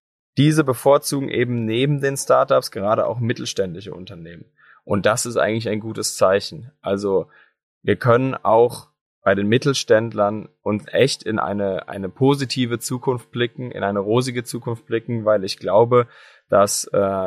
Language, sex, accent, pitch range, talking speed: German, male, German, 100-125 Hz, 145 wpm